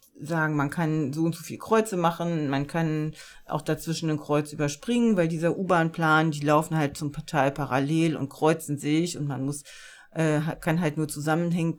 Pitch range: 145-185 Hz